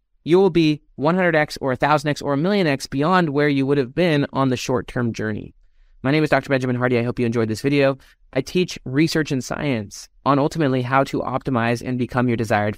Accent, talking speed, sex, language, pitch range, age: American, 205 wpm, male, English, 120-155 Hz, 30-49